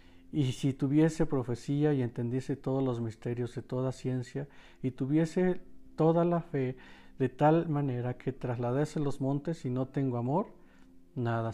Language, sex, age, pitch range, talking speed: Spanish, male, 50-69, 125-155 Hz, 150 wpm